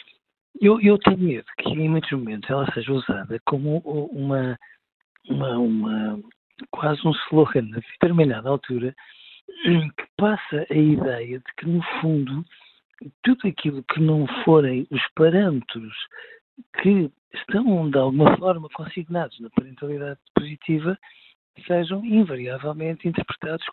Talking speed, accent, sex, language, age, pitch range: 120 wpm, Portuguese, male, Portuguese, 50-69, 130-165 Hz